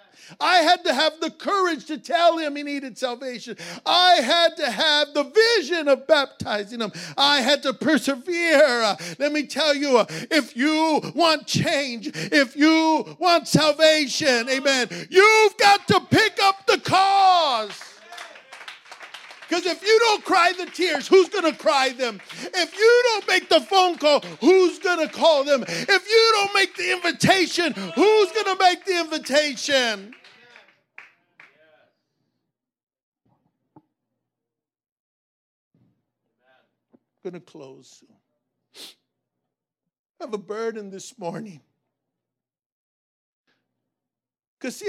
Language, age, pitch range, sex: English, 50-69, 255-360 Hz, male